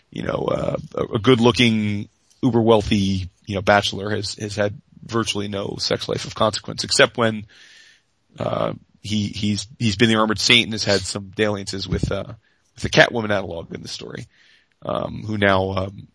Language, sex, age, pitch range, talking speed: English, male, 30-49, 105-120 Hz, 180 wpm